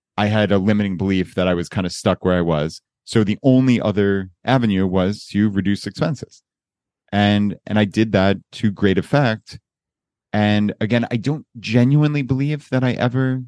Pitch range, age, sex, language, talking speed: 100-120 Hz, 30-49, male, English, 180 wpm